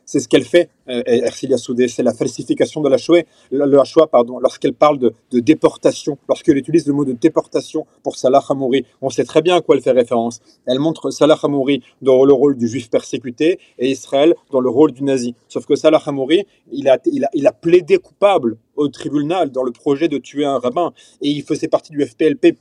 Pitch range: 135-165 Hz